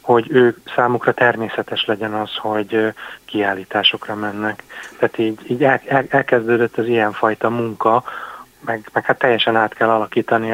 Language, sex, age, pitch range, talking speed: Hungarian, male, 30-49, 115-130 Hz, 130 wpm